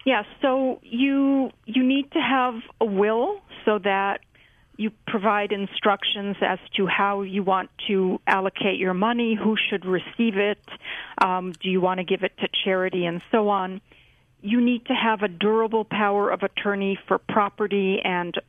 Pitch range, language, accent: 190-220 Hz, English, American